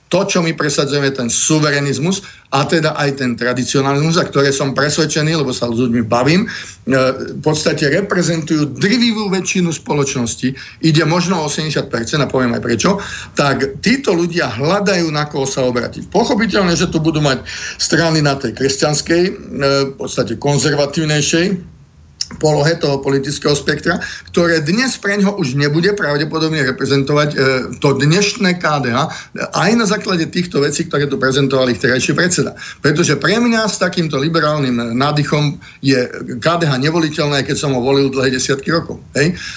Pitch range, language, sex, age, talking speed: 135-170 Hz, Slovak, male, 50-69, 150 wpm